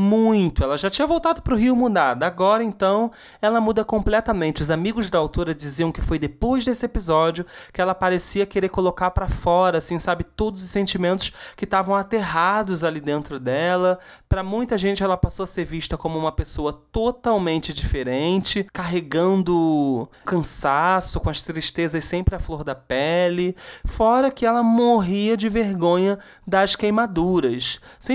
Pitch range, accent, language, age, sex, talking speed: 160-200 Hz, Brazilian, Portuguese, 20-39, male, 155 wpm